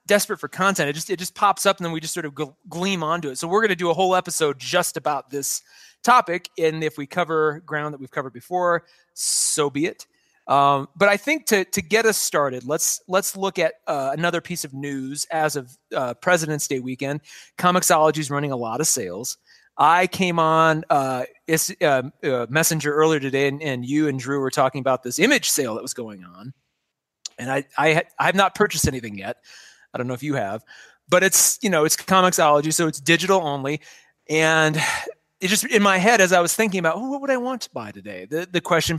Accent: American